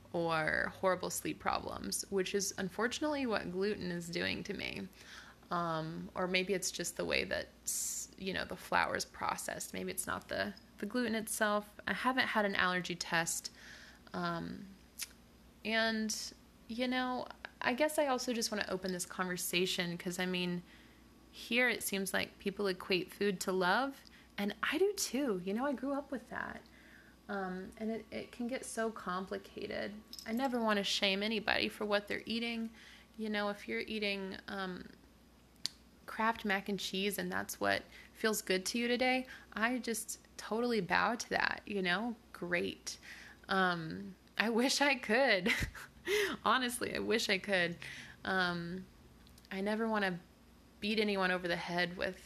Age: 20-39